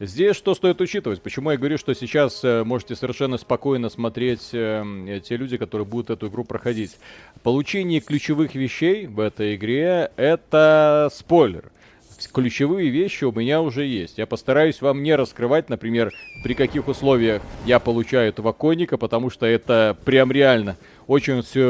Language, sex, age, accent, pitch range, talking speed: Russian, male, 30-49, native, 105-135 Hz, 145 wpm